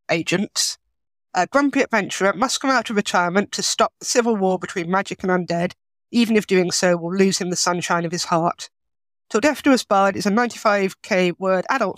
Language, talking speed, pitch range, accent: English, 210 wpm, 180-225 Hz, British